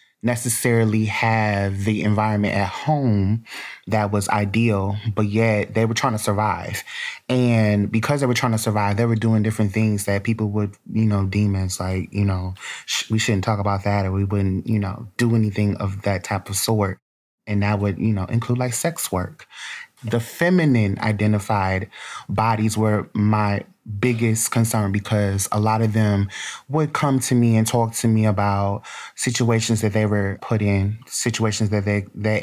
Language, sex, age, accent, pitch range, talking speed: English, male, 20-39, American, 100-115 Hz, 175 wpm